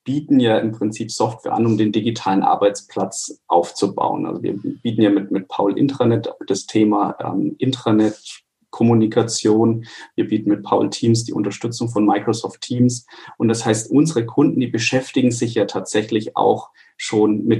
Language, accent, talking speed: German, German, 155 wpm